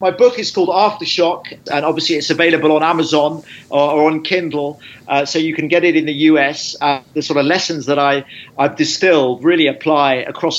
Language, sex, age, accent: English, male, 40-59, British